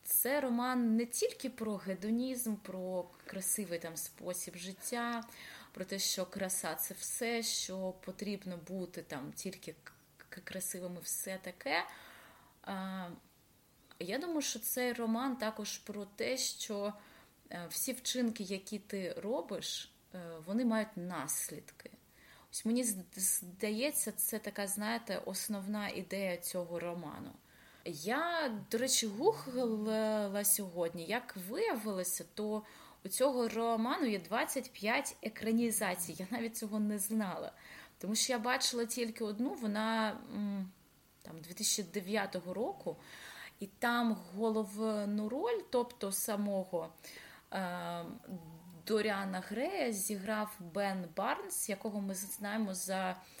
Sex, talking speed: female, 105 wpm